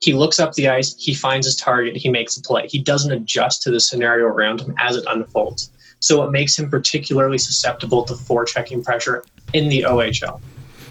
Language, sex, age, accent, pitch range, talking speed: English, male, 20-39, American, 115-135 Hz, 200 wpm